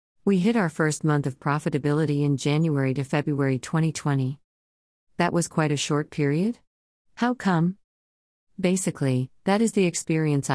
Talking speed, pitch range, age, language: 140 wpm, 130-160 Hz, 50-69, English